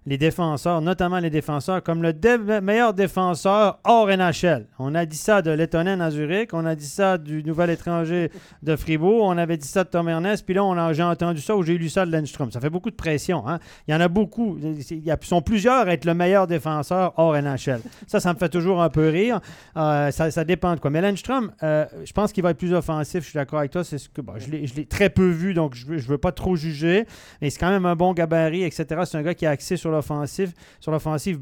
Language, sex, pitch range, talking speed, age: French, male, 150-185 Hz, 260 wpm, 30-49